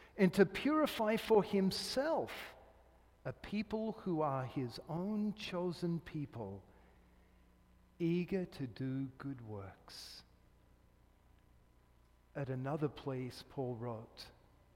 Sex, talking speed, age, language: male, 95 wpm, 50-69, English